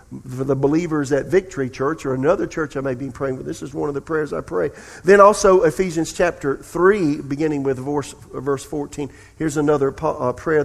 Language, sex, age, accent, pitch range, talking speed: English, male, 50-69, American, 135-170 Hz, 195 wpm